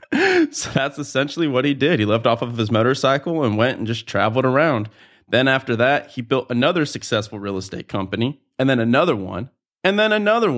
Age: 30-49